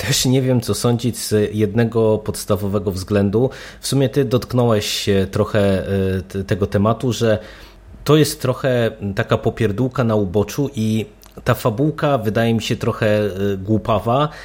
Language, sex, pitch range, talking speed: Polish, male, 100-115 Hz, 135 wpm